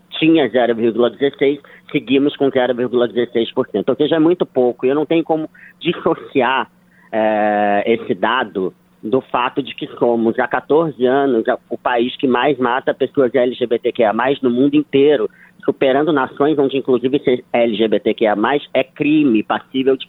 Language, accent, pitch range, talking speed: Portuguese, Brazilian, 130-165 Hz, 135 wpm